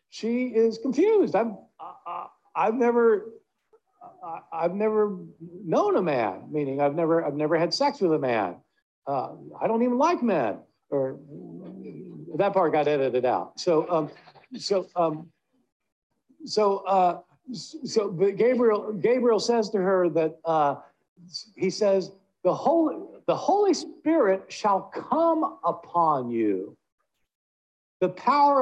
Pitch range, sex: 170-270 Hz, male